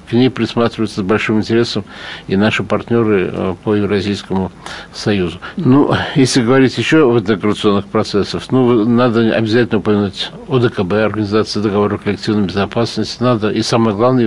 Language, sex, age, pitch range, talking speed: Russian, male, 60-79, 100-120 Hz, 140 wpm